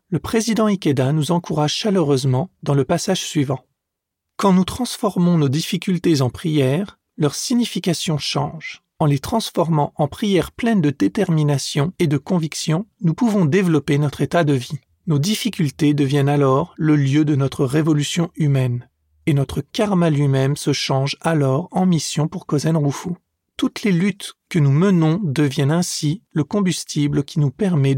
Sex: male